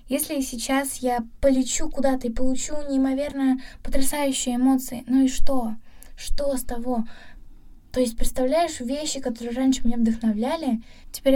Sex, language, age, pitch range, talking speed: female, Russian, 10-29, 230-270 Hz, 130 wpm